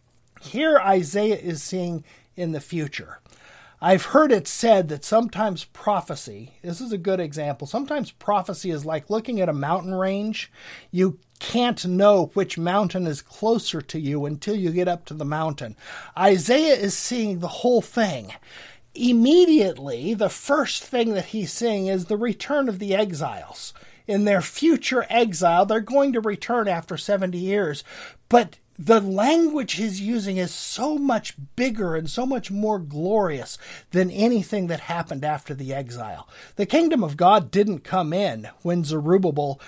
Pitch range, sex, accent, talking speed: 165-225 Hz, male, American, 155 wpm